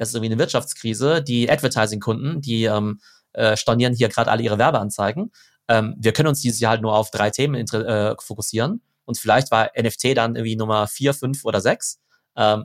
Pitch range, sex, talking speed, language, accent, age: 110-130 Hz, male, 200 wpm, German, German, 30-49